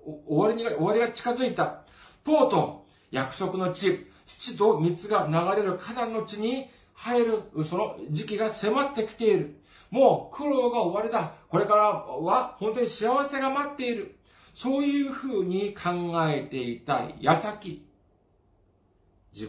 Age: 40-59